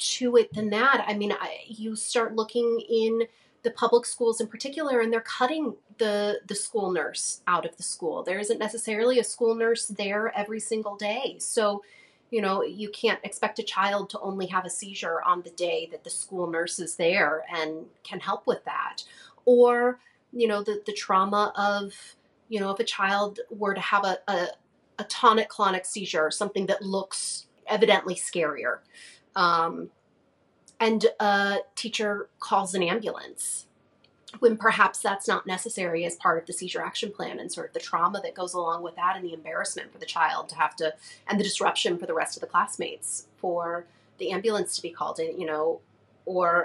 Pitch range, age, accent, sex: 180-225 Hz, 30-49, American, female